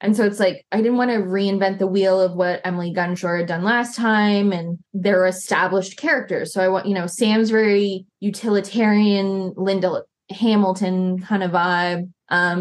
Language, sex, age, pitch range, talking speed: English, female, 20-39, 180-210 Hz, 175 wpm